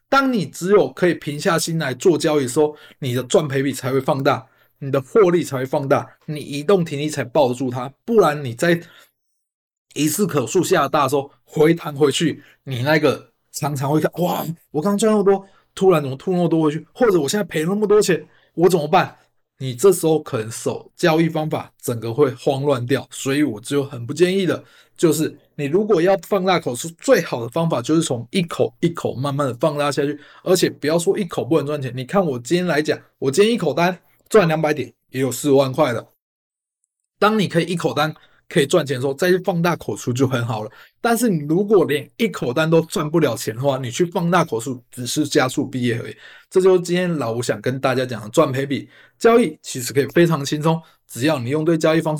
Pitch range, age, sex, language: 140-175 Hz, 20-39, male, Chinese